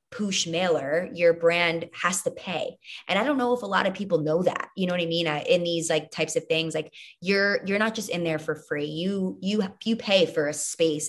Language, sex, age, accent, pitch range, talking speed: English, female, 20-39, American, 165-230 Hz, 245 wpm